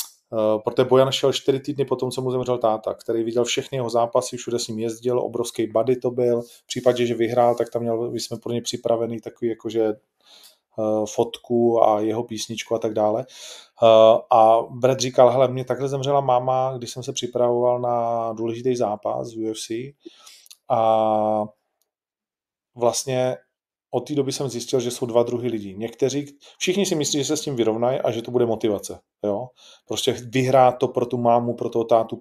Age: 30-49